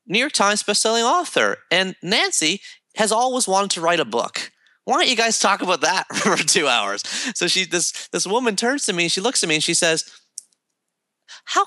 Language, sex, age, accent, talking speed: English, male, 30-49, American, 205 wpm